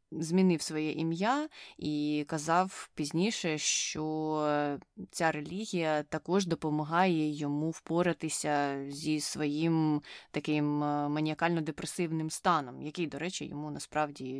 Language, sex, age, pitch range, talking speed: Ukrainian, female, 20-39, 155-185 Hz, 95 wpm